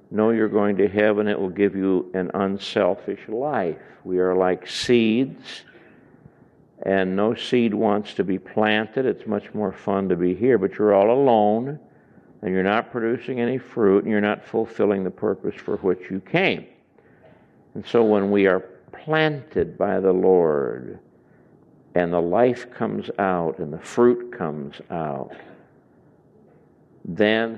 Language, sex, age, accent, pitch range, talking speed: English, male, 60-79, American, 95-120 Hz, 150 wpm